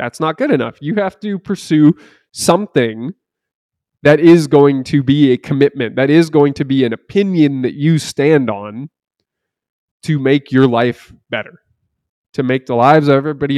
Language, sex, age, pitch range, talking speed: English, male, 20-39, 120-155 Hz, 170 wpm